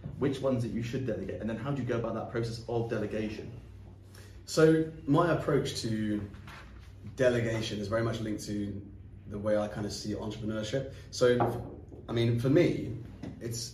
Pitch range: 105-120 Hz